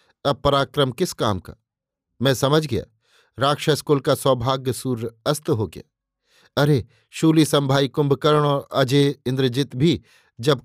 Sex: male